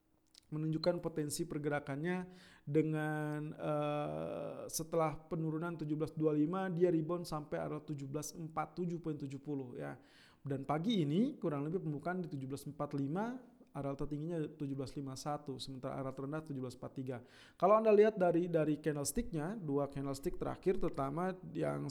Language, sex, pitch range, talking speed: Indonesian, male, 145-175 Hz, 110 wpm